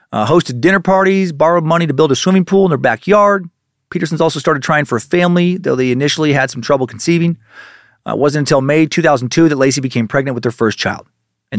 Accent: American